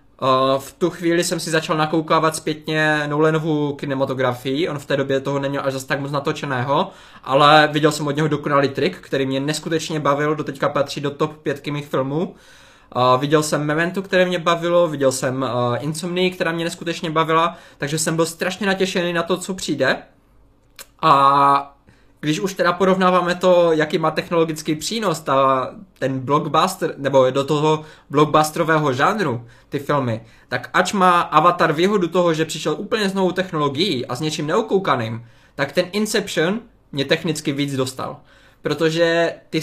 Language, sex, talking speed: Czech, male, 160 wpm